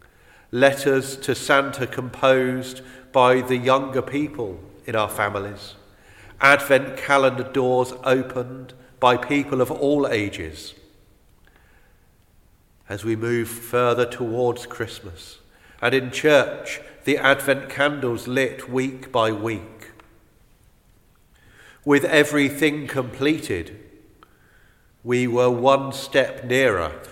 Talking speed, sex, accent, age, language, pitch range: 95 wpm, male, British, 40-59, English, 110-140 Hz